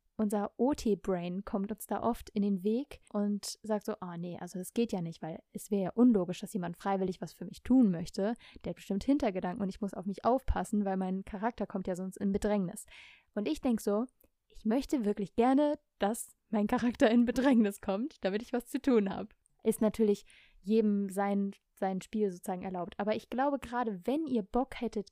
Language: German